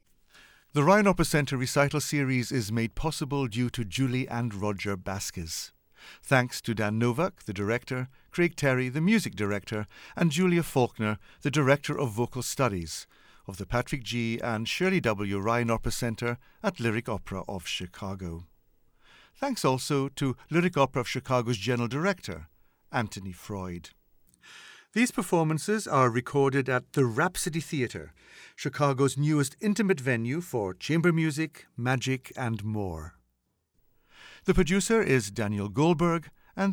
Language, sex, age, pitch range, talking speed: English, male, 60-79, 110-155 Hz, 135 wpm